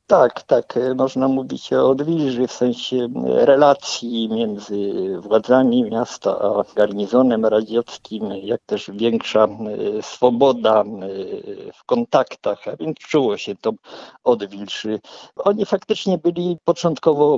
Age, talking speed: 50-69, 105 wpm